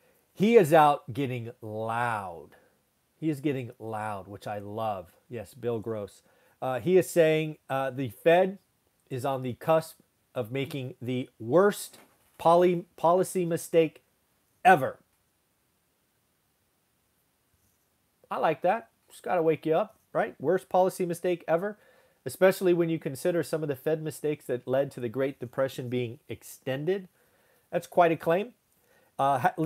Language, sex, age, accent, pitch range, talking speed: English, male, 40-59, American, 125-170 Hz, 140 wpm